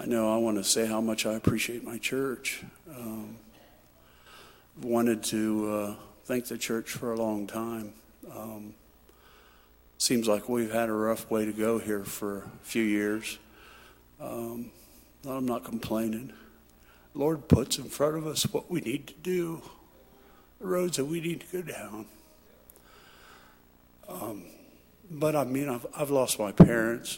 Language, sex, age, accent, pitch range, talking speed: English, male, 50-69, American, 100-145 Hz, 155 wpm